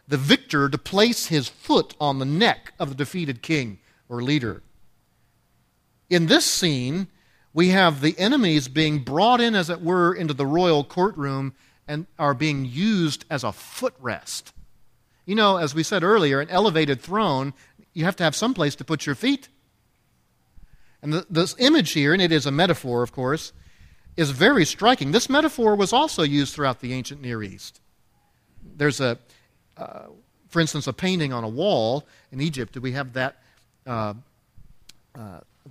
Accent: American